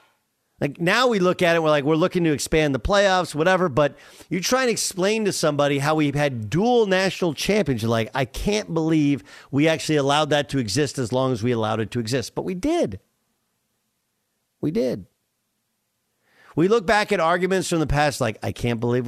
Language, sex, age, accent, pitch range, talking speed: English, male, 50-69, American, 120-180 Hz, 200 wpm